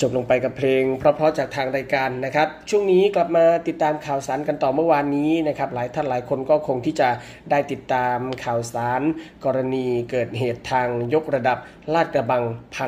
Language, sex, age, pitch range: Thai, male, 20-39, 125-155 Hz